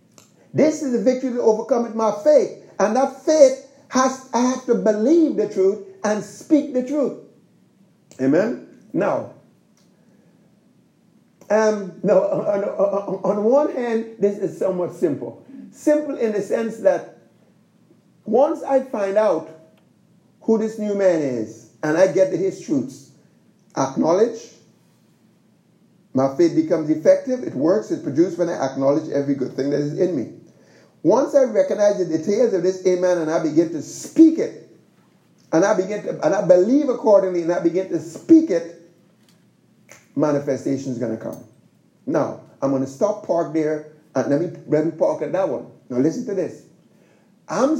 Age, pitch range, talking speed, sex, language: 50-69, 175-260 Hz, 160 wpm, male, English